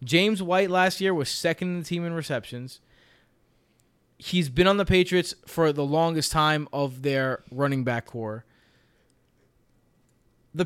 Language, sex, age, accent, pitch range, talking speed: English, male, 20-39, American, 135-170 Hz, 145 wpm